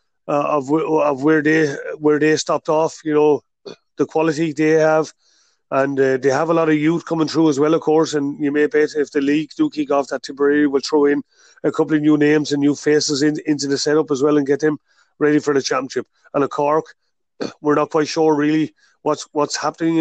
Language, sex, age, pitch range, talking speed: English, male, 30-49, 140-155 Hz, 230 wpm